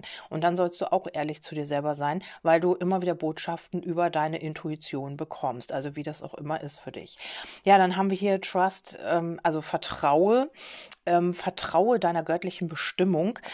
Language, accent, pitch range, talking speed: German, German, 165-190 Hz, 175 wpm